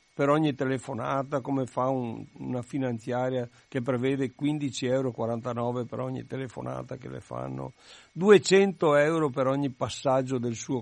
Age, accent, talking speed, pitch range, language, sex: 60-79, native, 135 wpm, 125-165 Hz, Italian, male